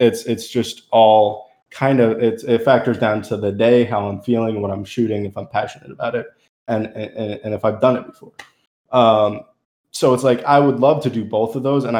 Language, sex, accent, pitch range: English, male, American, 105-120 Hz